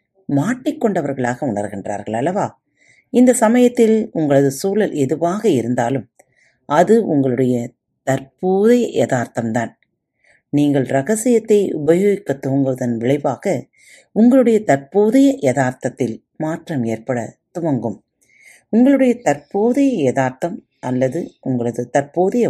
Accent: native